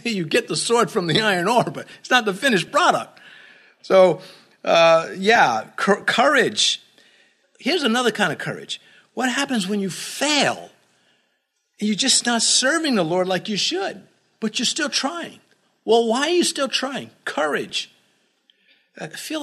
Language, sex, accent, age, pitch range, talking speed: English, male, American, 50-69, 185-250 Hz, 155 wpm